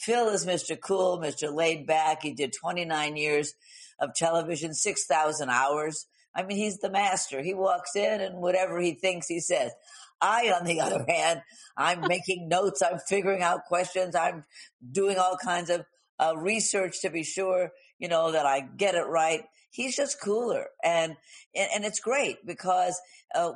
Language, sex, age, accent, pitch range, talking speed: English, female, 50-69, American, 155-190 Hz, 170 wpm